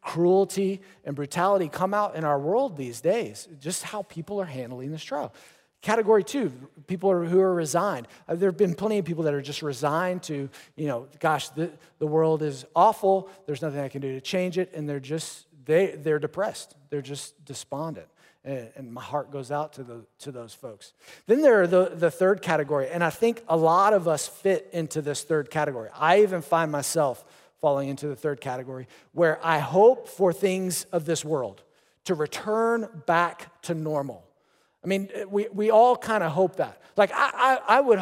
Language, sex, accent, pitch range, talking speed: English, male, American, 150-195 Hz, 200 wpm